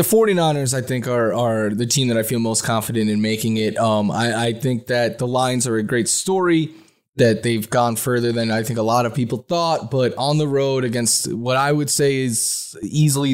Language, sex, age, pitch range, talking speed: English, male, 20-39, 120-155 Hz, 225 wpm